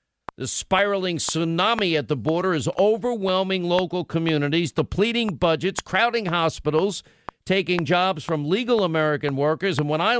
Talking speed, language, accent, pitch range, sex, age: 135 wpm, English, American, 155-190 Hz, male, 50-69